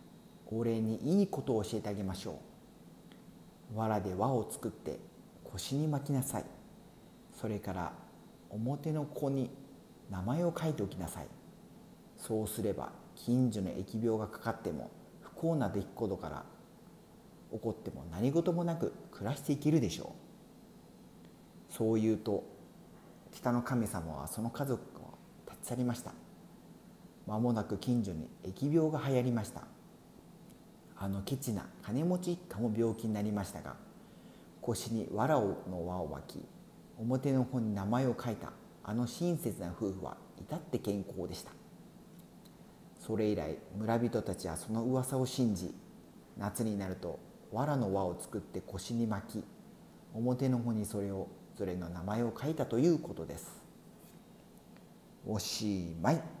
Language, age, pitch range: Spanish, 40-59, 100-130 Hz